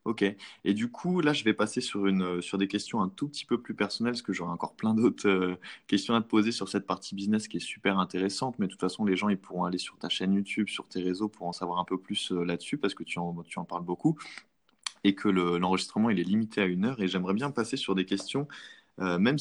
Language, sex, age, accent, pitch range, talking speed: French, male, 20-39, French, 95-115 Hz, 270 wpm